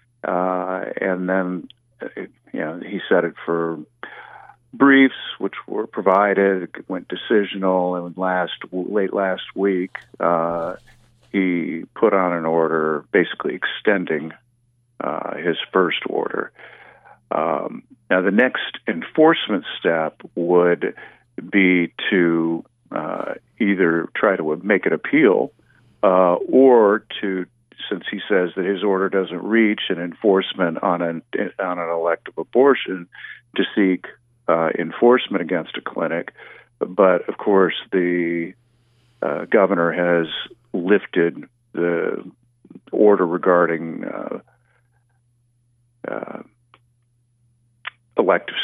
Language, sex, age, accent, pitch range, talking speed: English, male, 50-69, American, 85-120 Hz, 110 wpm